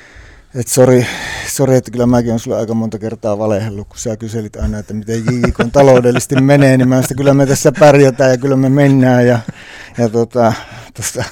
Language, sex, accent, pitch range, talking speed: Finnish, male, native, 120-140 Hz, 180 wpm